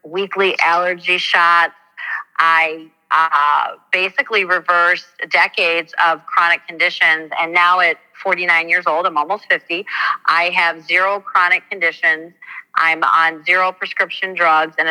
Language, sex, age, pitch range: English, female, 40-59, 170-205 Hz